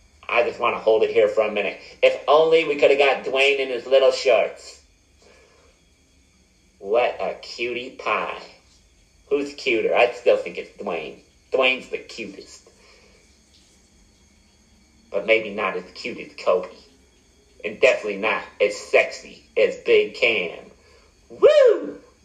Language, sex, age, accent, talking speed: English, male, 30-49, American, 140 wpm